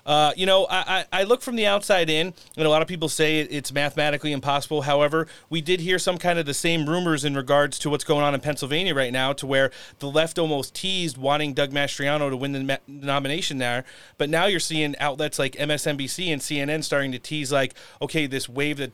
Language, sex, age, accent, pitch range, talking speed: English, male, 30-49, American, 130-160 Hz, 230 wpm